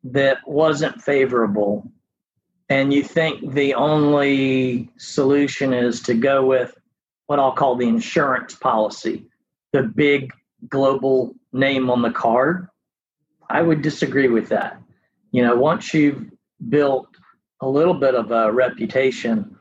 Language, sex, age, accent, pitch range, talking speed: English, male, 40-59, American, 125-145 Hz, 130 wpm